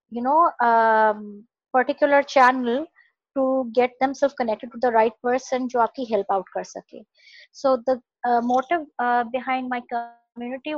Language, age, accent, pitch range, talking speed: English, 20-39, Indian, 215-260 Hz, 140 wpm